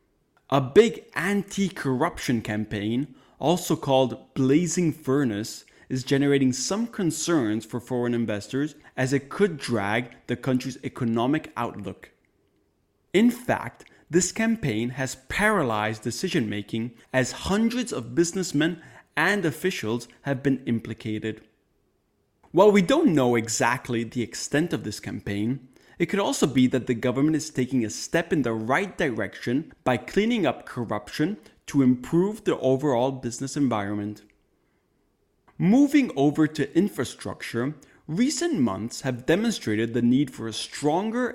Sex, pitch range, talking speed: male, 115-170 Hz, 125 wpm